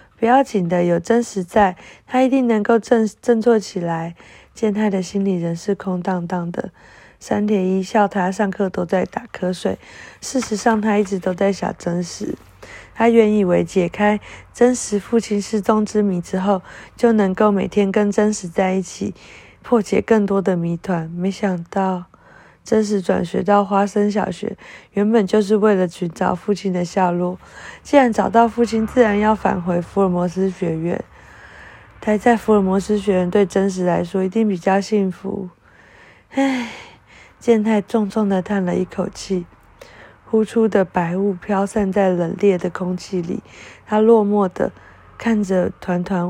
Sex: female